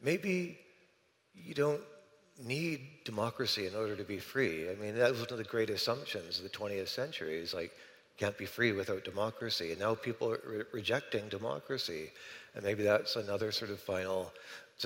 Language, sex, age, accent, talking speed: English, male, 40-59, American, 180 wpm